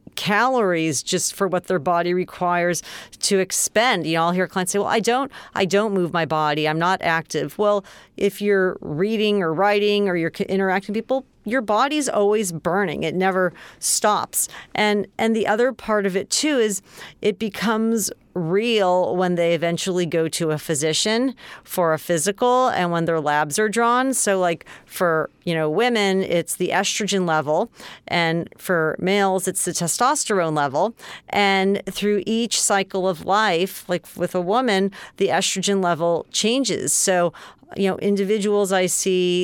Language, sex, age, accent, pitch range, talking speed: English, female, 40-59, American, 175-210 Hz, 165 wpm